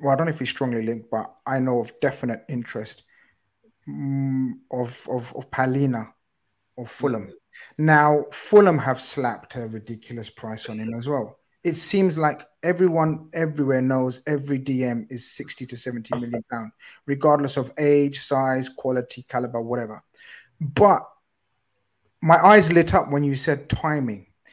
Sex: male